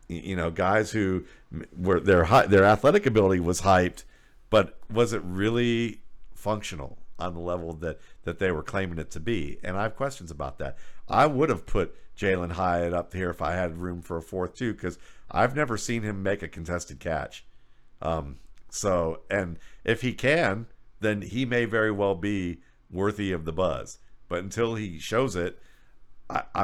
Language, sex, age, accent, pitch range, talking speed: English, male, 50-69, American, 85-105 Hz, 180 wpm